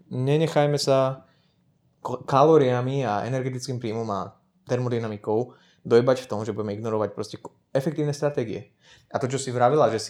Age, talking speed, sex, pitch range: 20-39, 145 wpm, male, 110-130 Hz